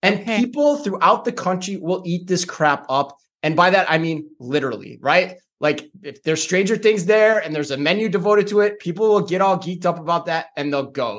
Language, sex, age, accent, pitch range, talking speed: English, male, 30-49, American, 145-190 Hz, 220 wpm